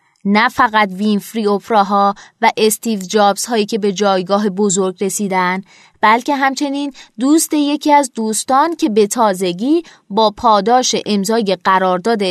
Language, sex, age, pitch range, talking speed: Persian, female, 20-39, 205-270 Hz, 125 wpm